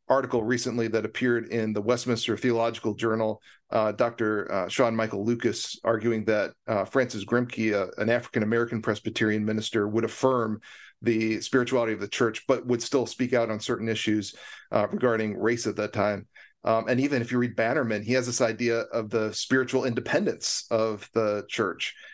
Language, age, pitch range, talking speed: English, 40-59, 110-125 Hz, 175 wpm